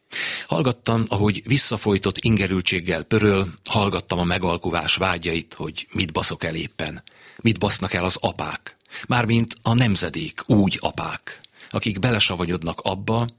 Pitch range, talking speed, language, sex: 90-115 Hz, 120 wpm, Hungarian, male